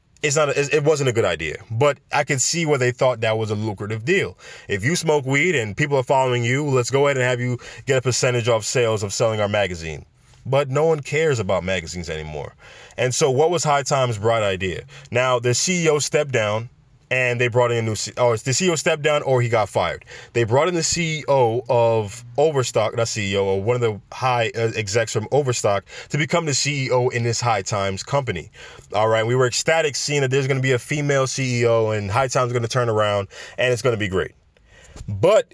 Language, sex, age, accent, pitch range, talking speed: English, male, 20-39, American, 115-145 Hz, 230 wpm